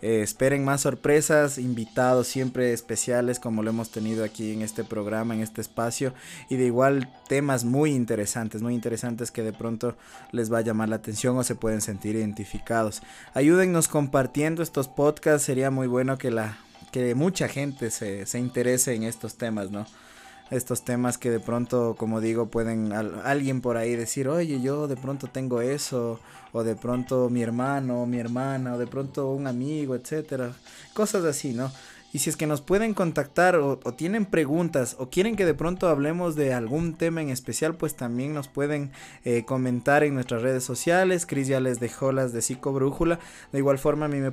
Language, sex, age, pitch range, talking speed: Spanish, male, 20-39, 120-145 Hz, 190 wpm